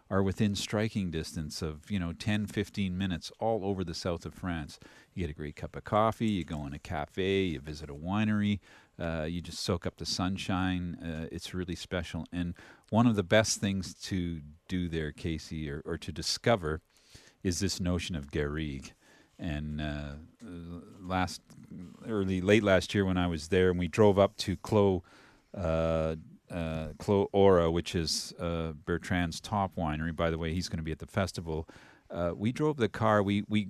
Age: 40-59